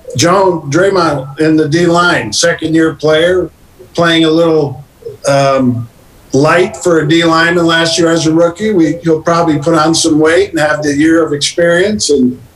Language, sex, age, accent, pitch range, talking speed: English, male, 50-69, American, 150-180 Hz, 165 wpm